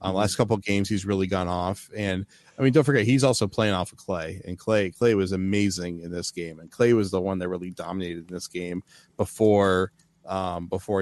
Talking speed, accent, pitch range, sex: 225 wpm, American, 95-115 Hz, male